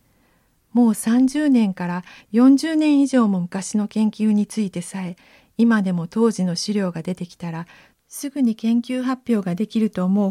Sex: female